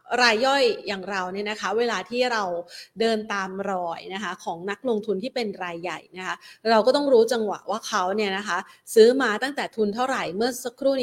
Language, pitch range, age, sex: Thai, 200-265 Hz, 30-49, female